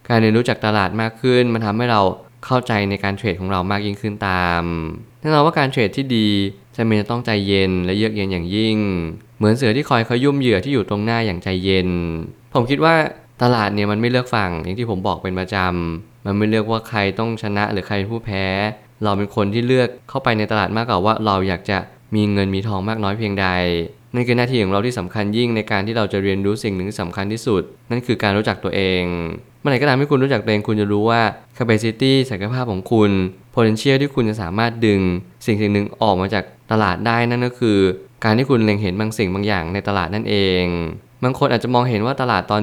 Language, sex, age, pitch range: Thai, male, 20-39, 100-120 Hz